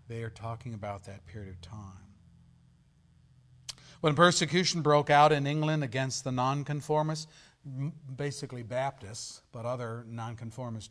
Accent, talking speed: American, 120 wpm